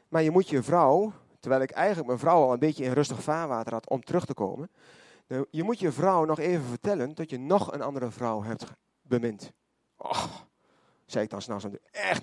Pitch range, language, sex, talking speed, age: 125-170 Hz, Dutch, male, 205 wpm, 30-49